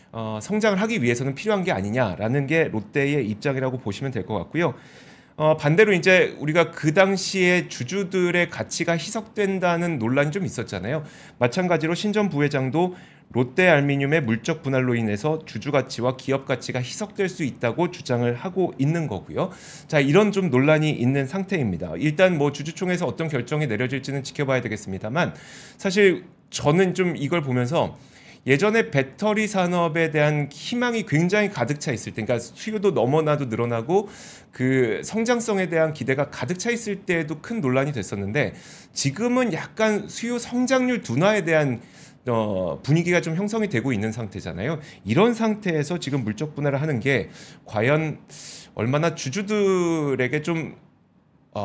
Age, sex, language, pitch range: 30-49, male, Korean, 130-185 Hz